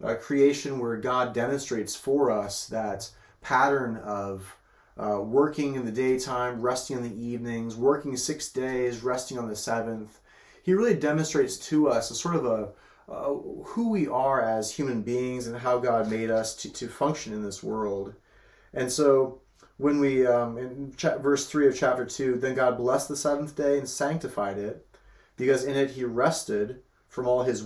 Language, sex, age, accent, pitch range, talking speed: English, male, 30-49, American, 115-140 Hz, 180 wpm